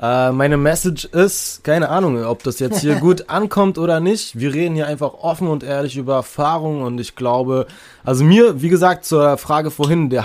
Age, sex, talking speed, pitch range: 20-39, male, 200 wpm, 125-150 Hz